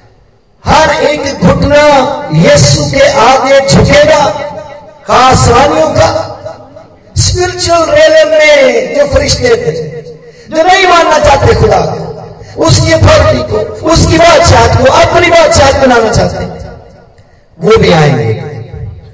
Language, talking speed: Hindi, 95 wpm